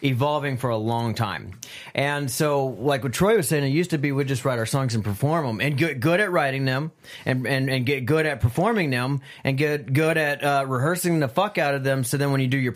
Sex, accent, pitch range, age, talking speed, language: male, American, 120-145 Hz, 30-49, 265 wpm, English